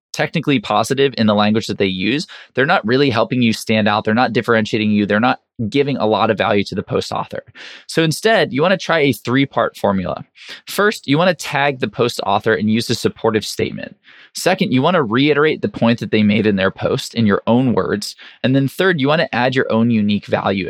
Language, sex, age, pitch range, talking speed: English, male, 20-39, 105-135 Hz, 230 wpm